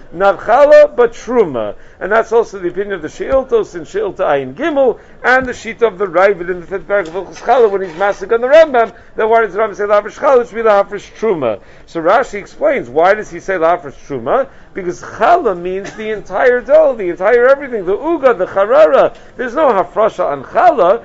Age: 50-69